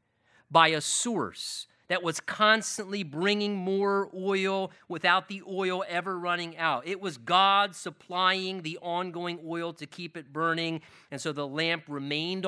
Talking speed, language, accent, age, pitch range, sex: 150 wpm, English, American, 40-59, 140-190 Hz, male